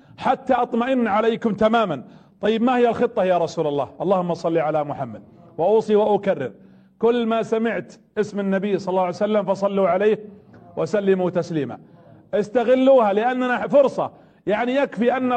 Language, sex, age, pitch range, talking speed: Arabic, male, 40-59, 210-250 Hz, 140 wpm